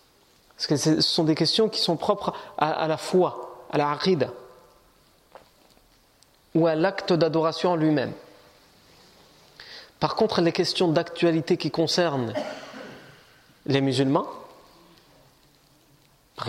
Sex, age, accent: male, 40-59, French